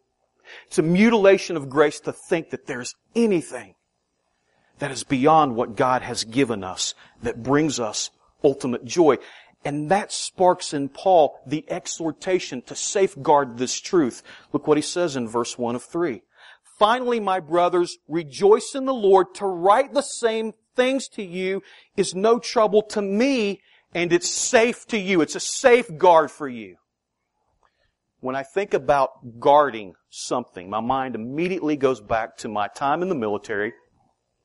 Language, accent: English, American